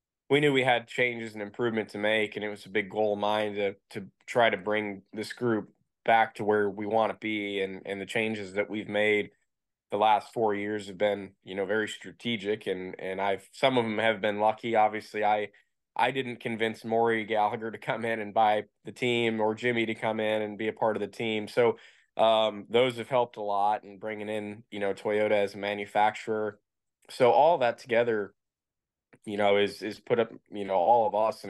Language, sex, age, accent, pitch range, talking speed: English, male, 20-39, American, 100-115 Hz, 220 wpm